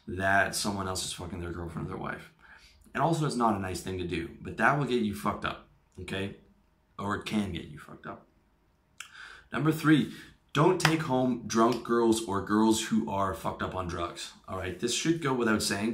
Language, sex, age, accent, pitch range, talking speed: English, male, 20-39, American, 95-120 Hz, 210 wpm